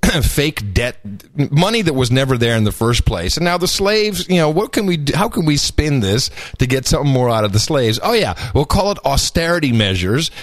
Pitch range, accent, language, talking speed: 115-185 Hz, American, English, 235 wpm